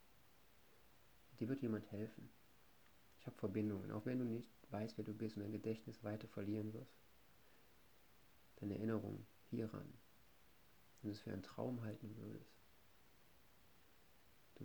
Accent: German